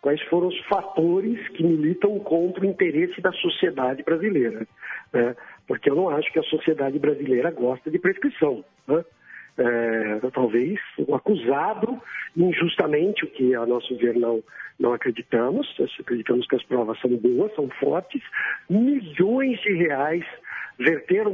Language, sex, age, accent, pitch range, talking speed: Portuguese, male, 60-79, Brazilian, 160-230 Hz, 145 wpm